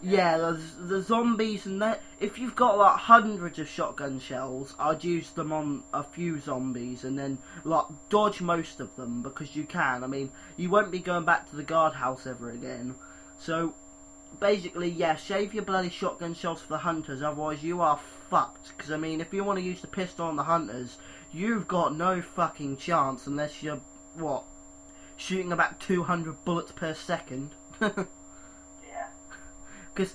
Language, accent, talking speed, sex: English, British, 170 wpm, male